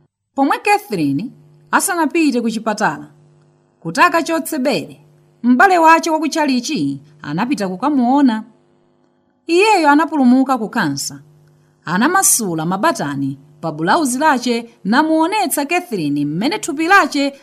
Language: English